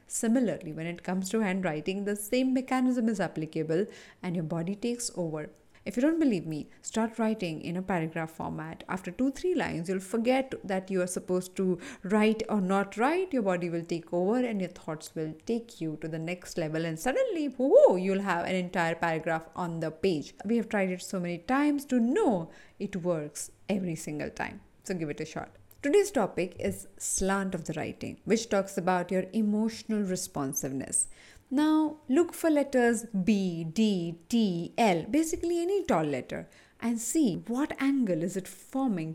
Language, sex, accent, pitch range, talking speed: English, female, Indian, 175-250 Hz, 180 wpm